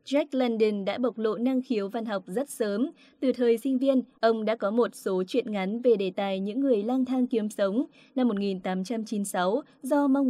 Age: 20-39